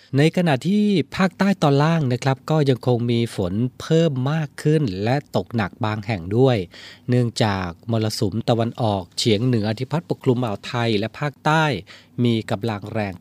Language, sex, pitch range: Thai, male, 105-135 Hz